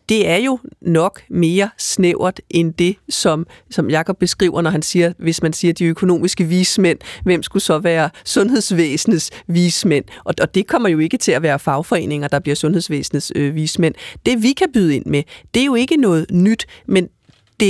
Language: Danish